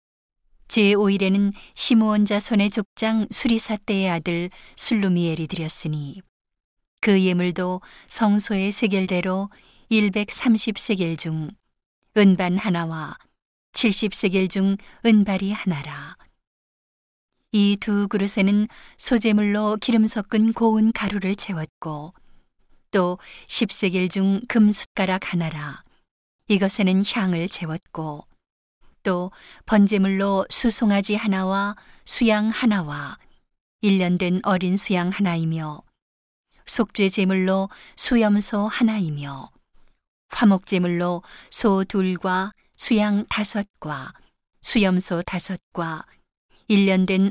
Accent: native